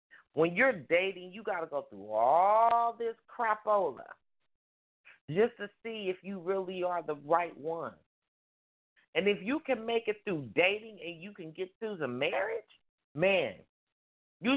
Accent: American